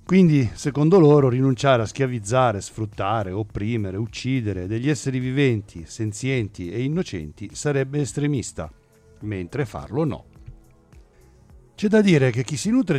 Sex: male